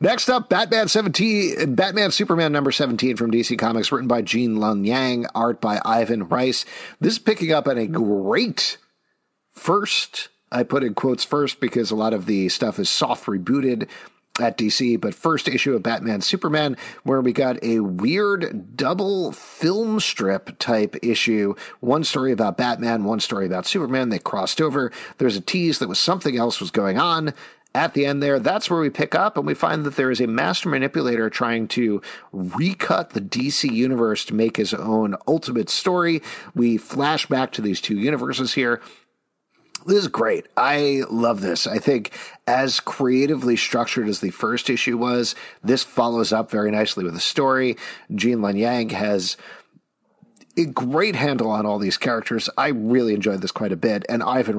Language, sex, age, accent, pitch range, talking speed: English, male, 50-69, American, 115-155 Hz, 180 wpm